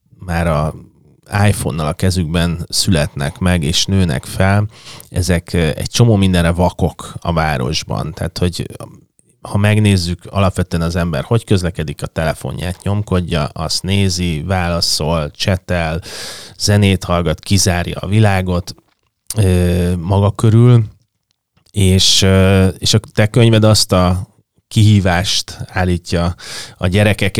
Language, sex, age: Hungarian, male, 30-49